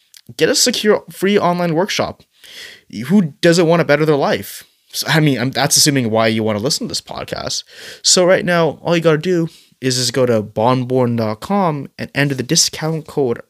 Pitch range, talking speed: 120-160 Hz, 200 wpm